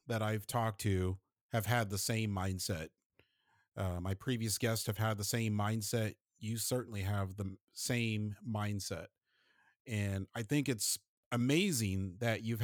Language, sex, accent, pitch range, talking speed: English, male, American, 100-115 Hz, 145 wpm